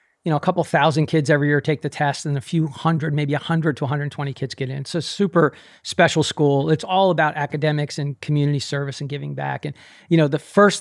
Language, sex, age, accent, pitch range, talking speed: English, male, 40-59, American, 145-170 Hz, 250 wpm